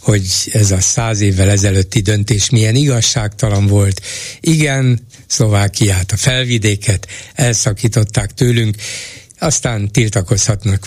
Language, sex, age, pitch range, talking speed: Hungarian, male, 60-79, 110-130 Hz, 100 wpm